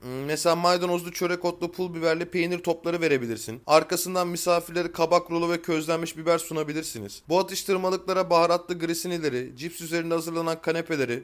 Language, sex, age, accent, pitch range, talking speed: Turkish, male, 30-49, native, 155-180 Hz, 135 wpm